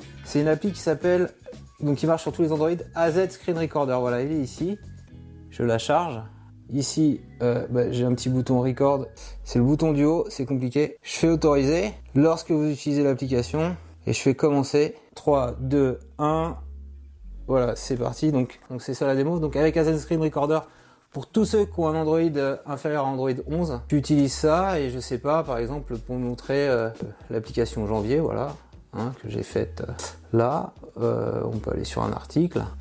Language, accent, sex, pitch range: French, French, male, 120-155 Hz